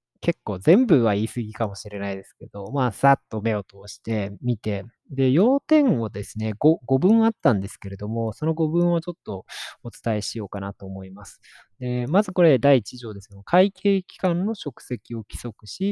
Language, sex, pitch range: Japanese, male, 105-170 Hz